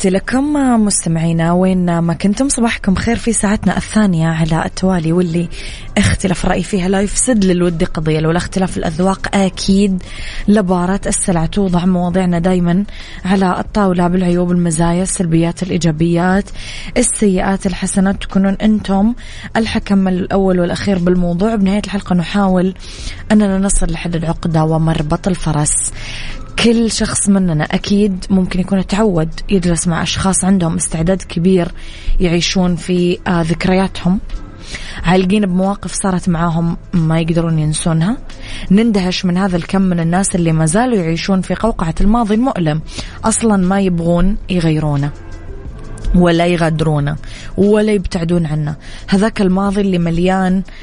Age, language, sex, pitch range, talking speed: 20-39, English, female, 170-195 Hz, 120 wpm